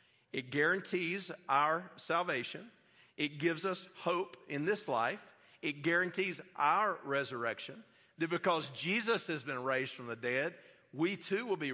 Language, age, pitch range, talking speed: English, 50-69, 140-215 Hz, 145 wpm